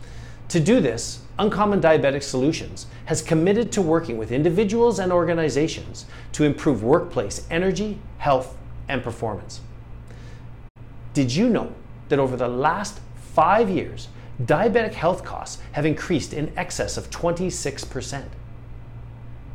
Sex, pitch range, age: male, 120-160 Hz, 40-59